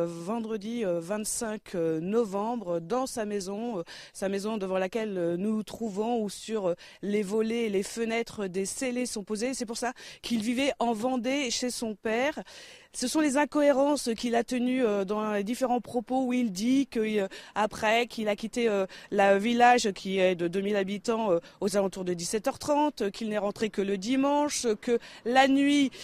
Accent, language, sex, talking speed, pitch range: French, French, female, 165 wpm, 190-235 Hz